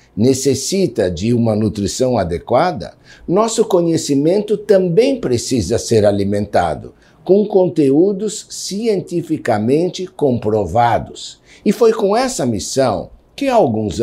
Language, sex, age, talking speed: Portuguese, male, 60-79, 100 wpm